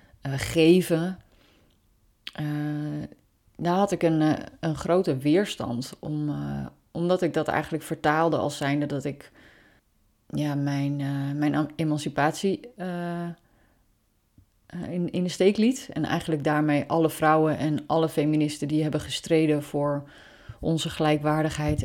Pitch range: 145-165 Hz